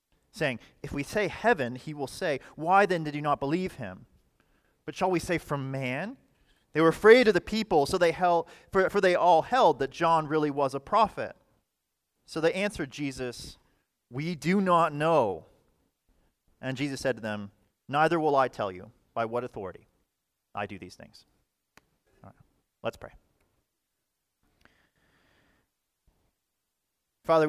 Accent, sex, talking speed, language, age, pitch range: American, male, 155 wpm, English, 30-49, 105-150 Hz